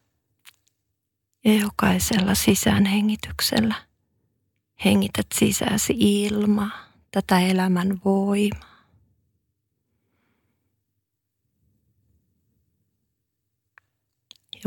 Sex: female